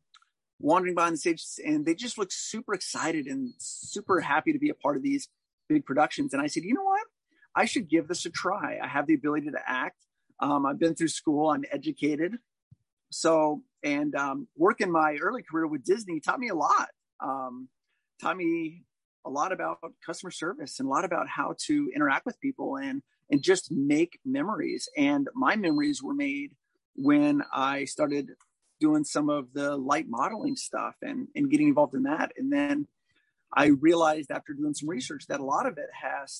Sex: male